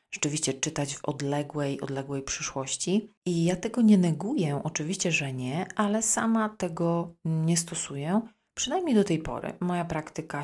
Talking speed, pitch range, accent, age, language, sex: 145 wpm, 145-180 Hz, native, 30-49, Polish, female